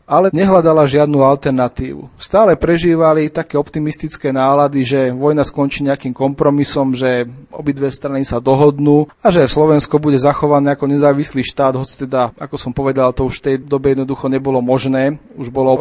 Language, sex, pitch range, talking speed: Slovak, male, 135-150 Hz, 160 wpm